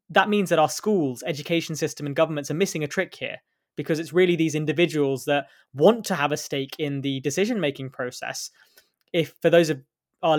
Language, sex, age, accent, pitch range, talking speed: English, male, 20-39, British, 140-170 Hz, 195 wpm